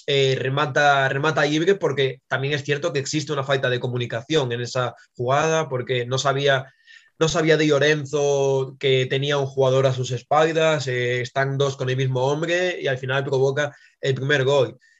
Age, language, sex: 20-39, Spanish, male